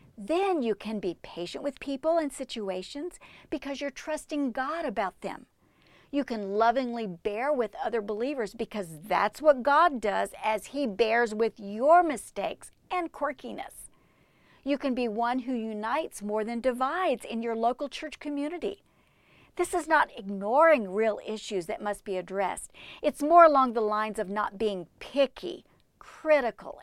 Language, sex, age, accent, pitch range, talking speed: English, female, 50-69, American, 210-290 Hz, 155 wpm